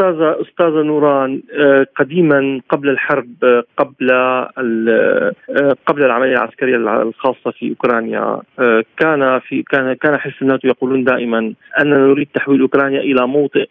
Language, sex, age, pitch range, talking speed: Arabic, male, 40-59, 135-175 Hz, 115 wpm